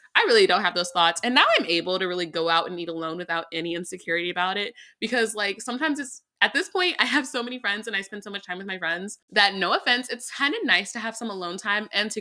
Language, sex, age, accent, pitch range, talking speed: English, female, 20-39, American, 175-235 Hz, 280 wpm